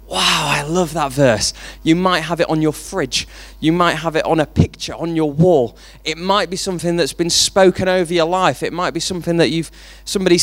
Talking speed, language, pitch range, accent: 225 wpm, English, 115-175 Hz, British